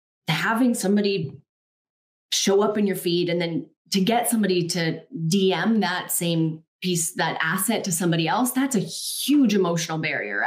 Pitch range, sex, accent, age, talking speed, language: 155-190 Hz, female, American, 20-39, 155 wpm, English